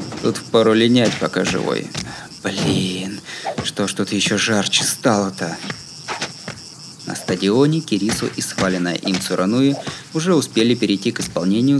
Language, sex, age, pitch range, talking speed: Russian, male, 20-39, 95-140 Hz, 120 wpm